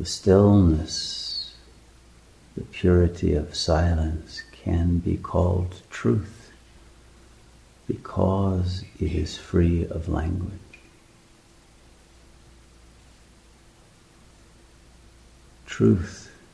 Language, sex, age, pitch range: English, male, 60-79, 65-95 Hz